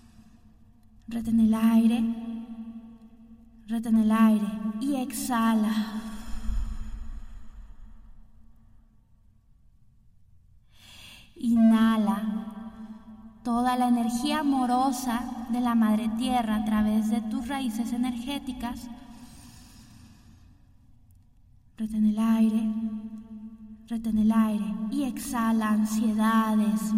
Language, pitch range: Spanish, 200-230 Hz